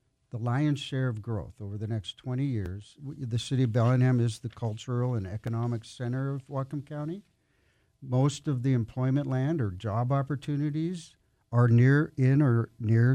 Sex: male